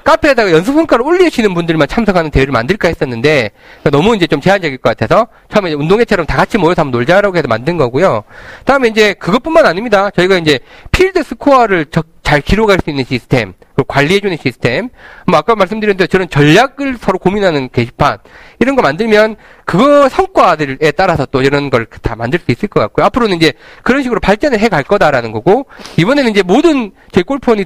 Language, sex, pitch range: Korean, male, 155-245 Hz